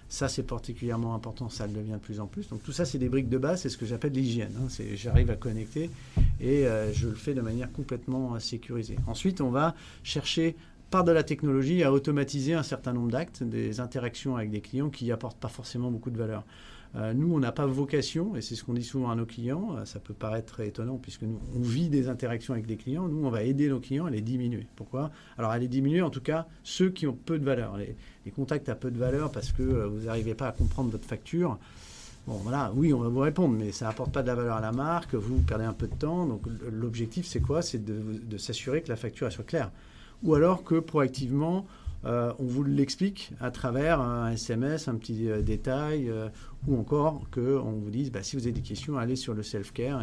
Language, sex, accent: French, male, French